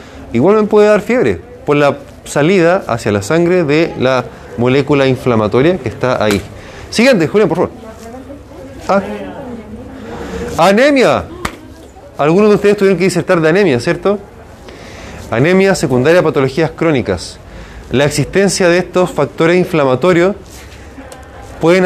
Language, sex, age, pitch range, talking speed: Spanish, male, 20-39, 120-175 Hz, 125 wpm